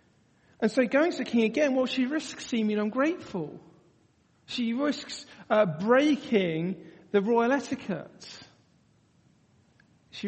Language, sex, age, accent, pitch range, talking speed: English, male, 40-59, British, 155-210 Hz, 115 wpm